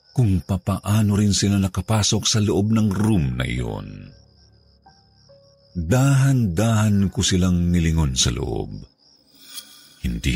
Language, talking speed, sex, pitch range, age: Filipino, 105 wpm, male, 80-110 Hz, 50-69